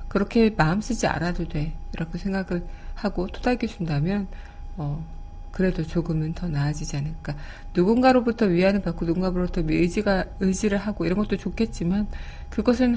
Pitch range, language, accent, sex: 165-210 Hz, Korean, native, female